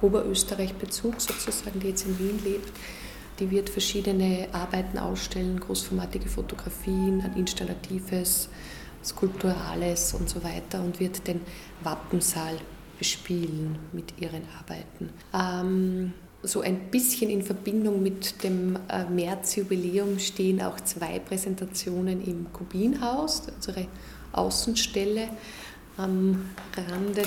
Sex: female